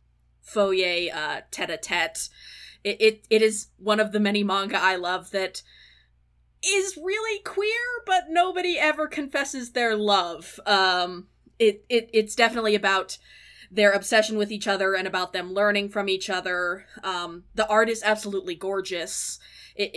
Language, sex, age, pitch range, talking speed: English, female, 20-39, 175-215 Hz, 145 wpm